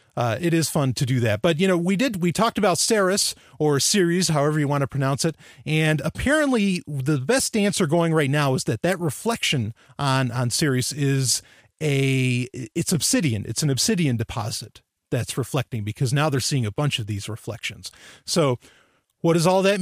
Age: 30-49